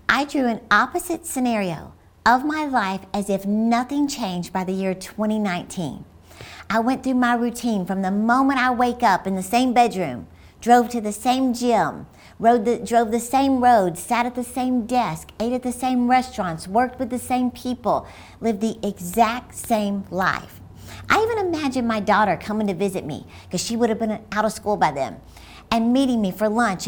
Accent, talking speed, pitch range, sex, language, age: American, 190 wpm, 195-245 Hz, female, English, 50-69